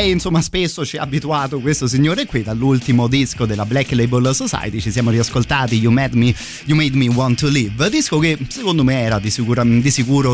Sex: male